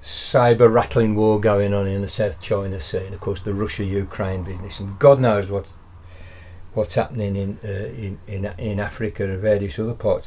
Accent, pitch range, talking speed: British, 90-110 Hz, 160 wpm